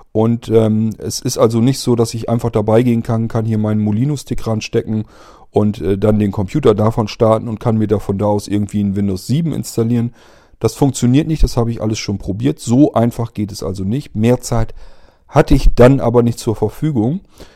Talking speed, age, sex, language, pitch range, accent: 200 wpm, 40-59, male, German, 110-130 Hz, German